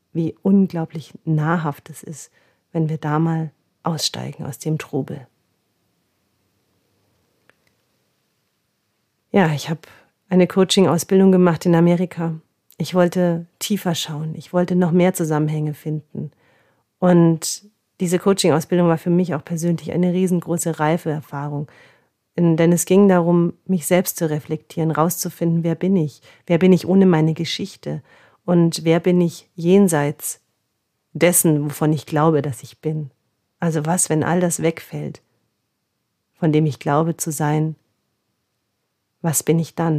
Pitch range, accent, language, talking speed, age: 155-180 Hz, German, German, 130 wpm, 40-59